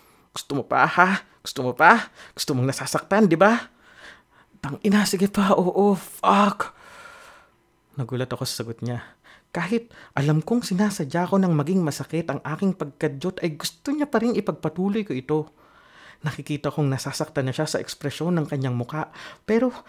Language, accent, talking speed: English, Filipino, 155 wpm